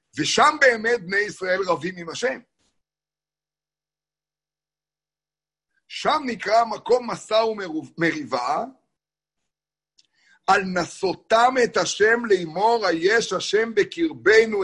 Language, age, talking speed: Hebrew, 60-79, 95 wpm